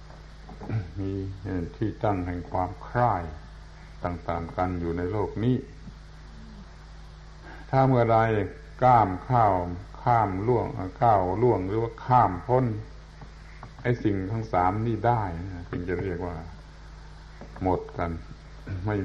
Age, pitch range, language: 60-79, 85-110 Hz, Thai